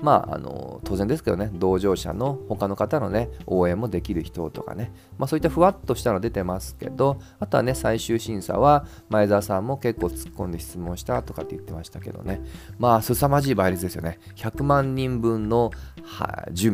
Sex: male